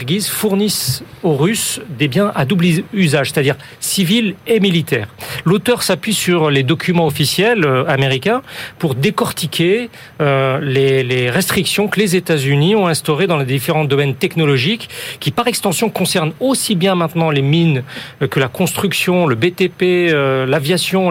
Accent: French